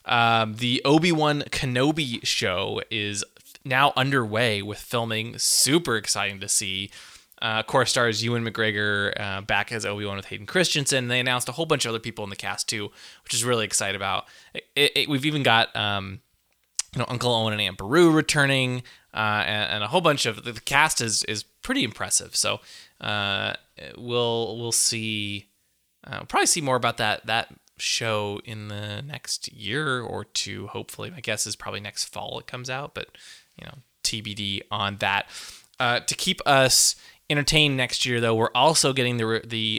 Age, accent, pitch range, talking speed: 20-39, American, 105-130 Hz, 185 wpm